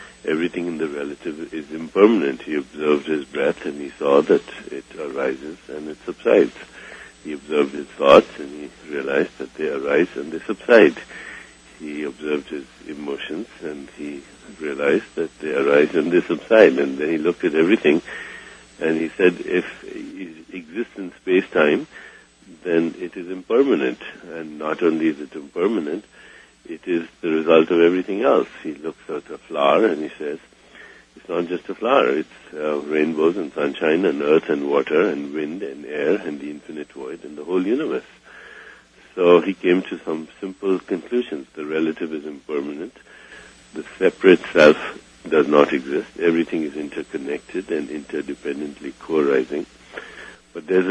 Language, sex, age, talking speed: English, male, 60-79, 160 wpm